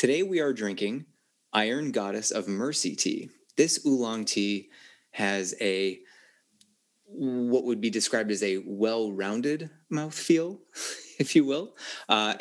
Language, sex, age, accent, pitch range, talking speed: English, male, 30-49, American, 100-130 Hz, 125 wpm